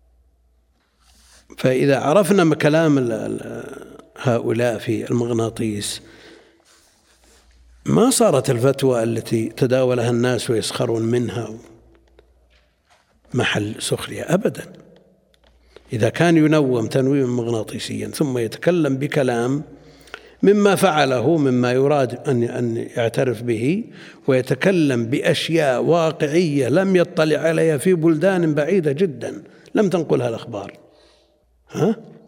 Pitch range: 120-160 Hz